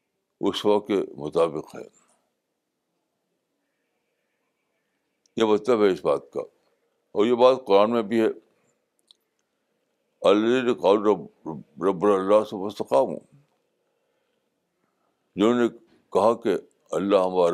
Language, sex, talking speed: Urdu, male, 95 wpm